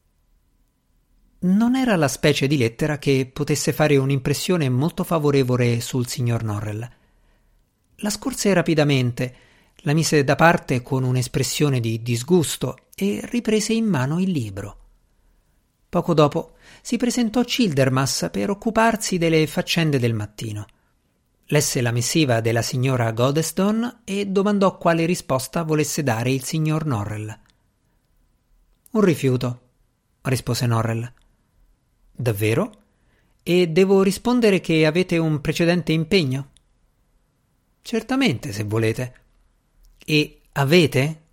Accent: native